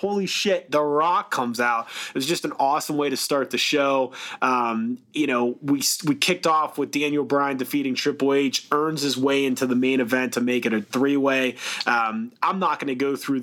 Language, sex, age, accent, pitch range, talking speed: English, male, 20-39, American, 120-140 Hz, 220 wpm